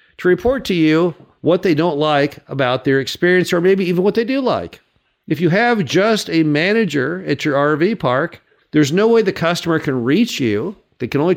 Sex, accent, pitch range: male, American, 135-190 Hz